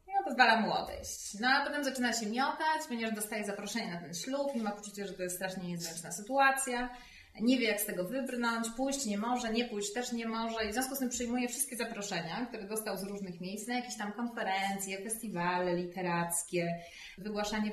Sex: female